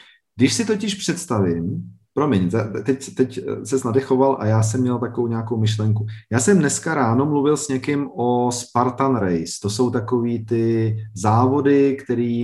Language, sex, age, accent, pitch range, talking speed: Czech, male, 40-59, native, 105-135 Hz, 155 wpm